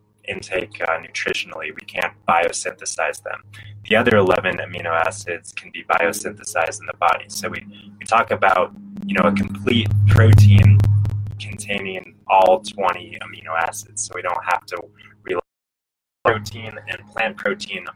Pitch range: 100-105 Hz